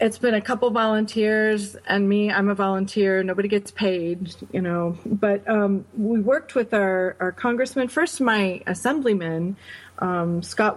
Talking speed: 155 wpm